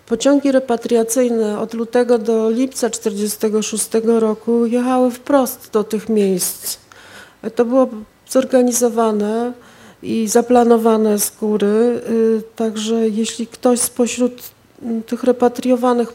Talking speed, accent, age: 95 wpm, native, 40-59